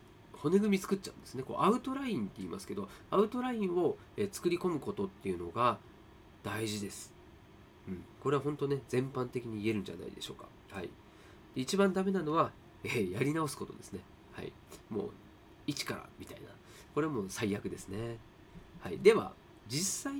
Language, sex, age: Japanese, male, 30-49